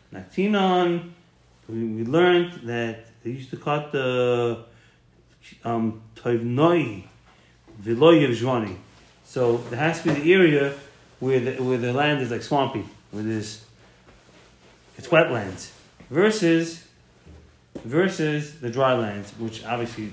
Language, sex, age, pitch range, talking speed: English, male, 30-49, 115-160 Hz, 115 wpm